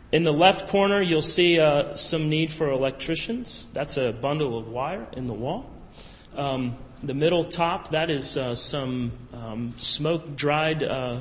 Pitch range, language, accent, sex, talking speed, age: 120-155 Hz, English, American, male, 165 wpm, 30-49